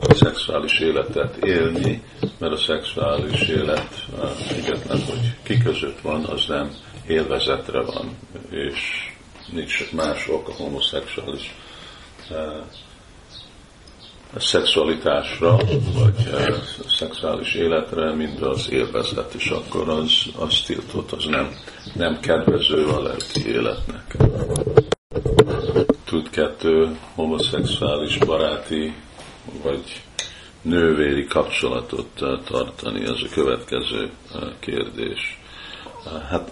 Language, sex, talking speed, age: Hungarian, male, 85 wpm, 50-69